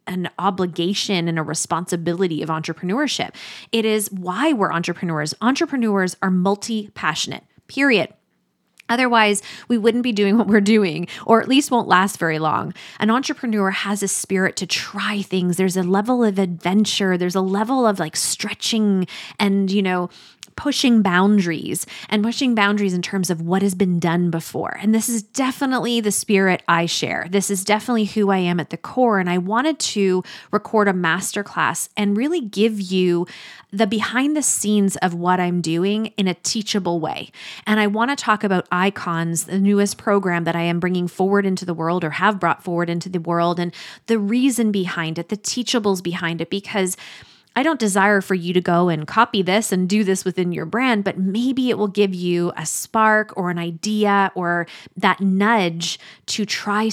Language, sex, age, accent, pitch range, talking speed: English, female, 20-39, American, 175-215 Hz, 185 wpm